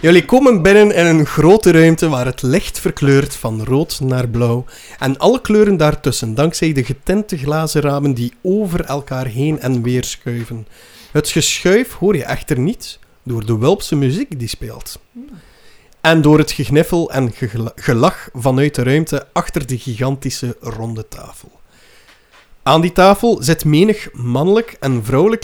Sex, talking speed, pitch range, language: male, 155 wpm, 125-175 Hz, Dutch